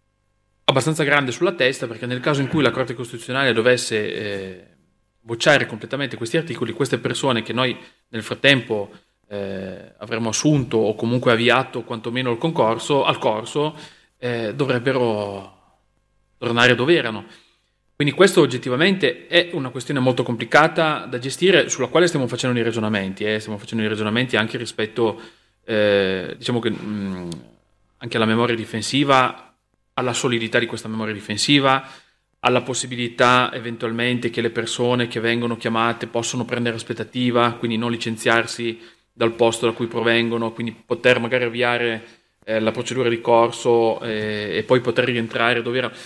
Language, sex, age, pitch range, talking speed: Italian, male, 30-49, 110-130 Hz, 145 wpm